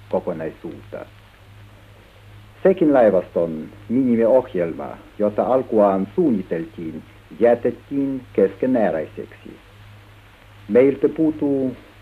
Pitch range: 100-130 Hz